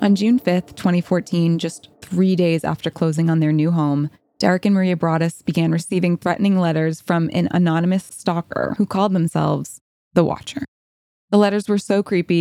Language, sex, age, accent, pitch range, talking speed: English, female, 20-39, American, 160-185 Hz, 170 wpm